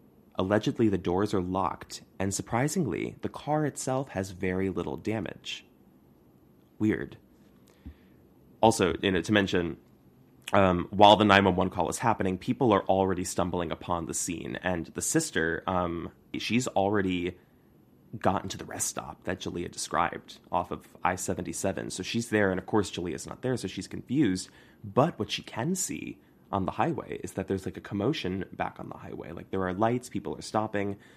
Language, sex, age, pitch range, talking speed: English, male, 20-39, 85-100 Hz, 170 wpm